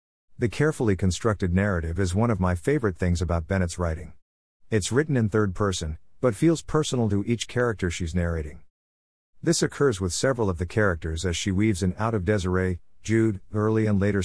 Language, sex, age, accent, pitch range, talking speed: English, male, 50-69, American, 85-110 Hz, 185 wpm